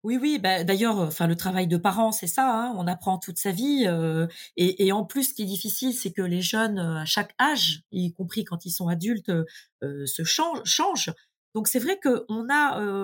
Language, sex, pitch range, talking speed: French, female, 195-255 Hz, 225 wpm